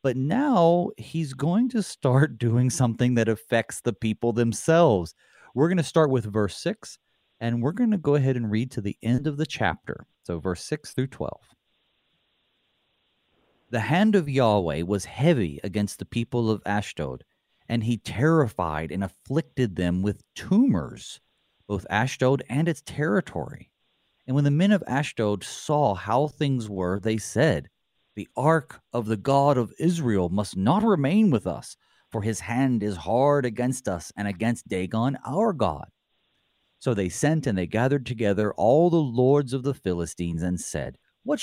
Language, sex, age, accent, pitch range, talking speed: English, male, 30-49, American, 100-145 Hz, 165 wpm